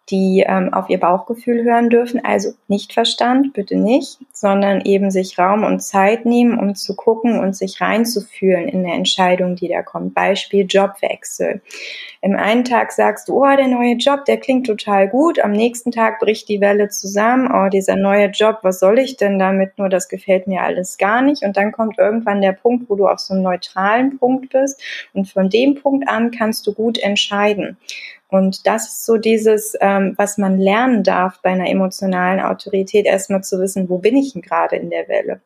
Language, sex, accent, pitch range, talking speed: German, female, German, 195-235 Hz, 200 wpm